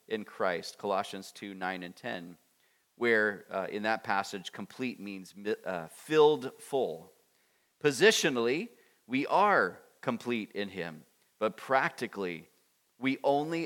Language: English